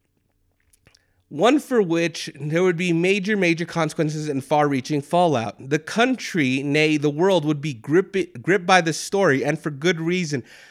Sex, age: male, 30-49